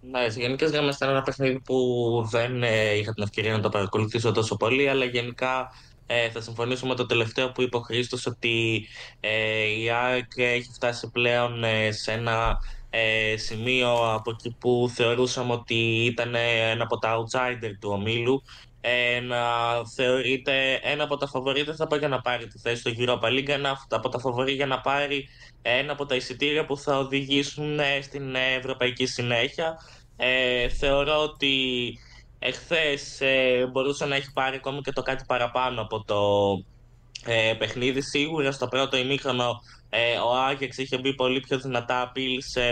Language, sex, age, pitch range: Greek, male, 20-39, 120-135 Hz